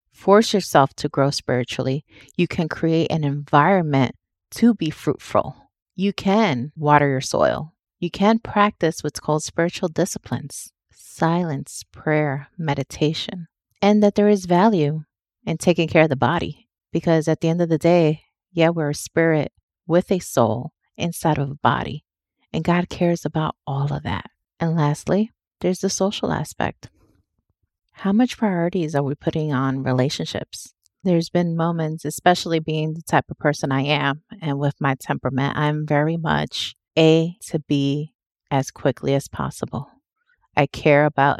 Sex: female